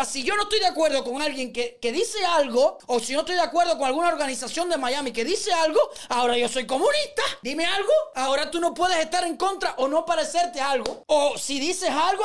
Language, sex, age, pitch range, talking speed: Spanish, male, 30-49, 245-320 Hz, 230 wpm